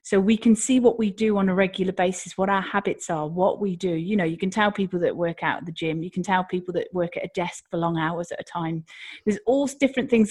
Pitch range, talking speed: 190-240 Hz, 285 wpm